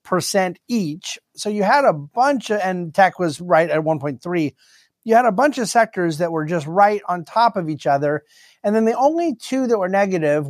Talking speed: 205 wpm